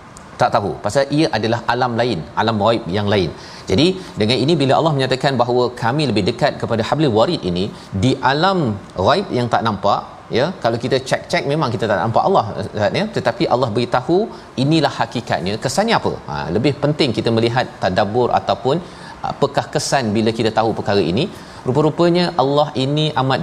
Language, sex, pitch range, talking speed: Malayalam, male, 110-135 Hz, 170 wpm